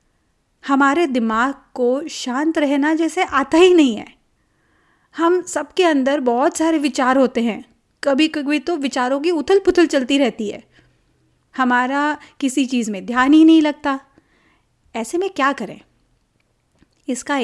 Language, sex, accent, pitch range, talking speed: Hindi, female, native, 240-310 Hz, 140 wpm